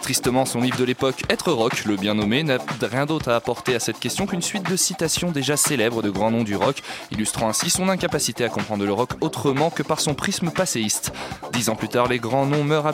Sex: male